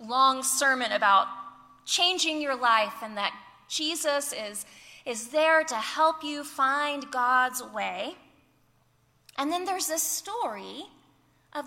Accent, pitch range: American, 235-315 Hz